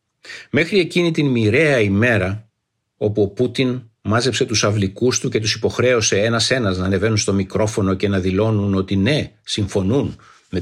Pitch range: 95-115 Hz